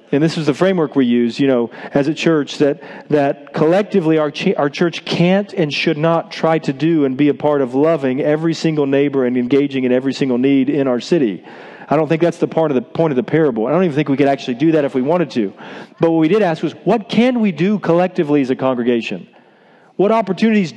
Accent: American